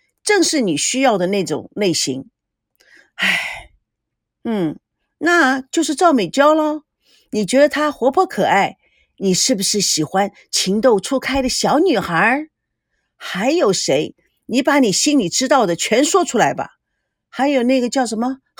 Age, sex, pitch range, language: 50-69, female, 220-310 Hz, Chinese